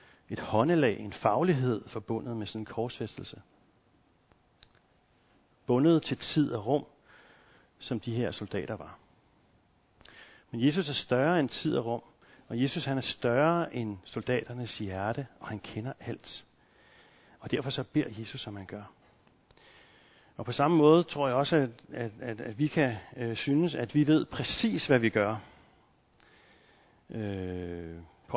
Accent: native